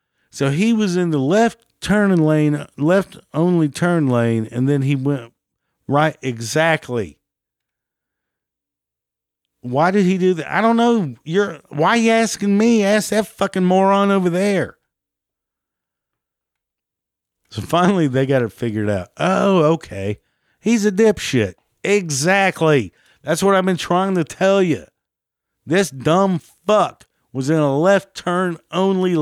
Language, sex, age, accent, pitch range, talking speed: English, male, 50-69, American, 120-180 Hz, 140 wpm